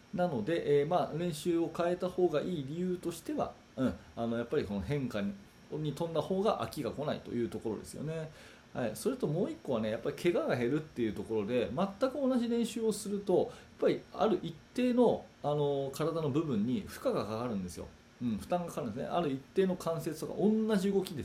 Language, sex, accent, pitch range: Japanese, male, native, 120-190 Hz